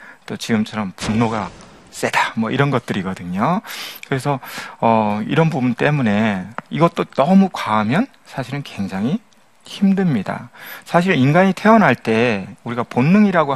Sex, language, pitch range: male, Korean, 115-185 Hz